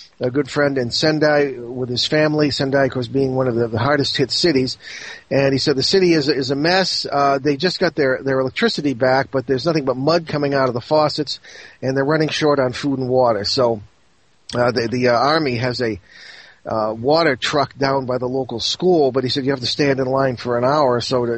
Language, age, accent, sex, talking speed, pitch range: English, 40-59, American, male, 235 wpm, 125-150 Hz